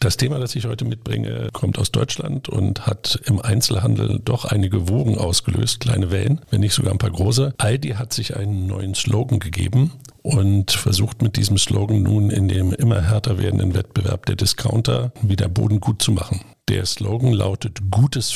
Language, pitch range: German, 105-120 Hz